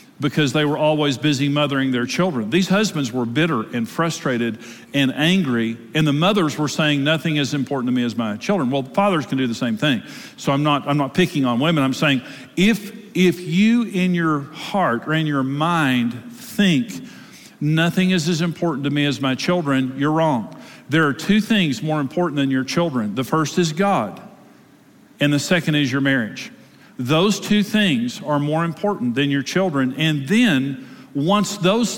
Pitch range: 140-190 Hz